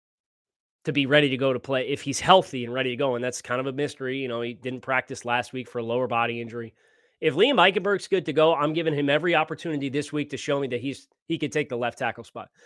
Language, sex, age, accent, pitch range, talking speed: English, male, 30-49, American, 130-175 Hz, 270 wpm